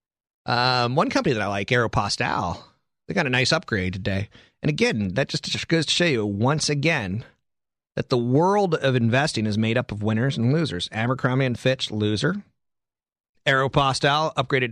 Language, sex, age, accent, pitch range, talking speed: English, male, 30-49, American, 110-140 Hz, 165 wpm